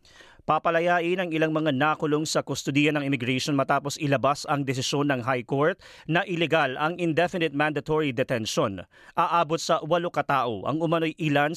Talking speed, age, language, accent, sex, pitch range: 150 wpm, 40-59, Filipino, native, male, 105-165 Hz